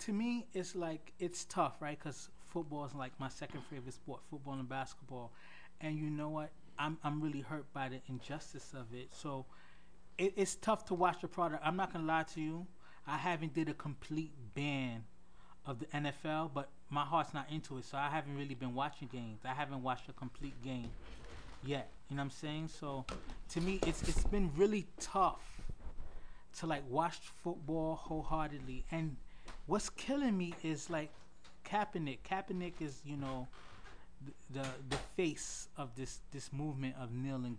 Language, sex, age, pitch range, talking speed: English, male, 20-39, 130-165 Hz, 180 wpm